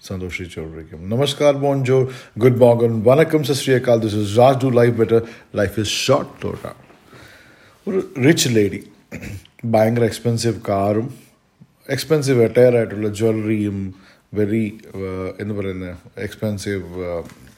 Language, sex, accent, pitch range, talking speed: English, male, Indian, 105-125 Hz, 95 wpm